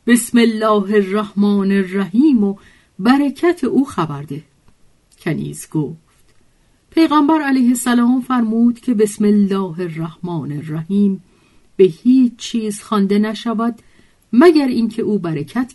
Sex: female